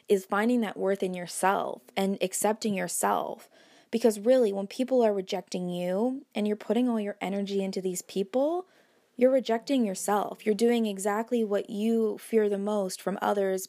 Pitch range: 195-235 Hz